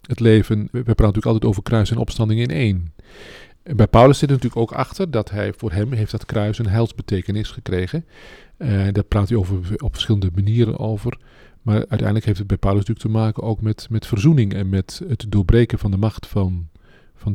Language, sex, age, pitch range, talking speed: Dutch, male, 40-59, 105-120 Hz, 205 wpm